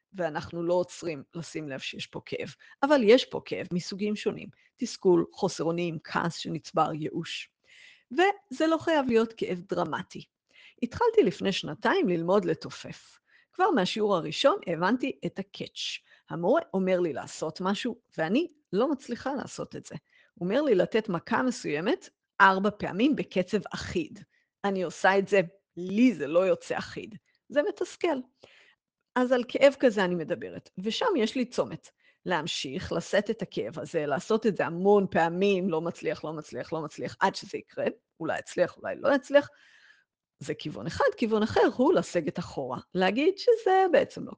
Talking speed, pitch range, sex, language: 155 wpm, 180-285 Hz, female, Hebrew